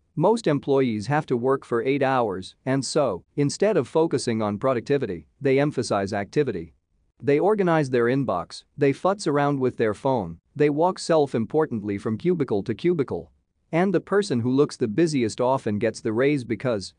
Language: English